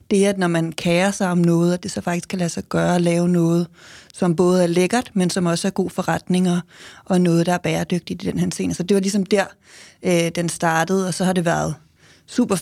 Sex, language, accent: female, Danish, native